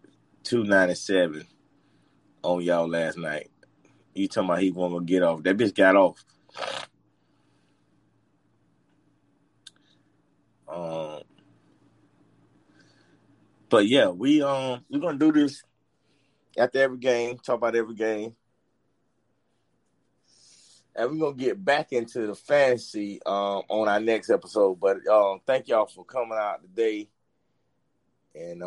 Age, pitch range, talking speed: 30-49, 105-130 Hz, 115 wpm